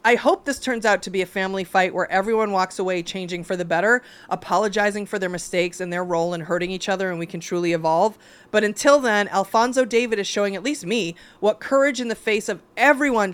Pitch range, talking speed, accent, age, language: 200-280 Hz, 230 wpm, American, 30-49, English